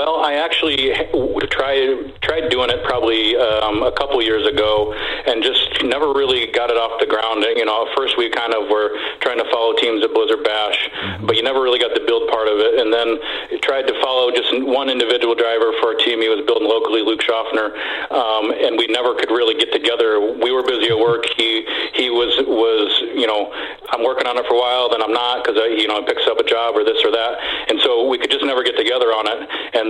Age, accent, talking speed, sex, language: 40-59, American, 235 wpm, male, English